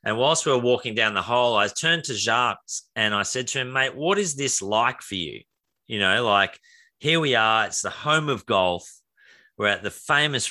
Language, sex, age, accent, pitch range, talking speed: English, male, 30-49, Australian, 110-160 Hz, 225 wpm